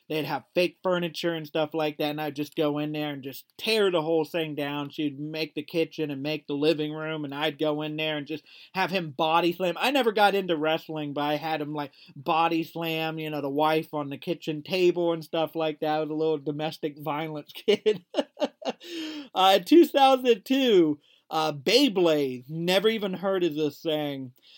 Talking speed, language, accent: 200 wpm, English, American